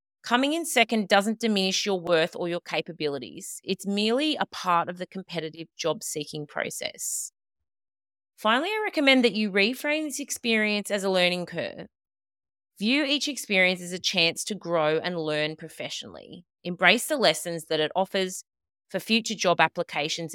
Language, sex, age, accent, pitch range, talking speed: English, female, 30-49, Australian, 165-225 Hz, 155 wpm